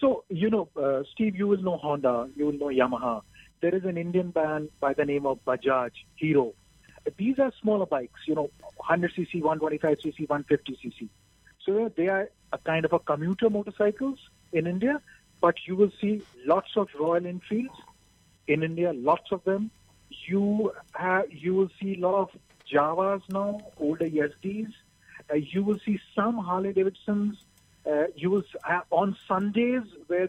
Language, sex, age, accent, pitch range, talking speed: English, male, 40-59, Indian, 155-205 Hz, 160 wpm